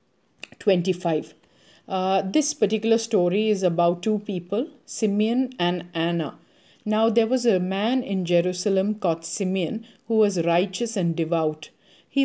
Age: 50-69